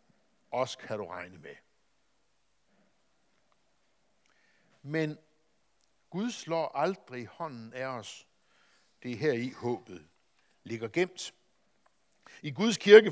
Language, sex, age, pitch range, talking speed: Danish, male, 60-79, 115-165 Hz, 100 wpm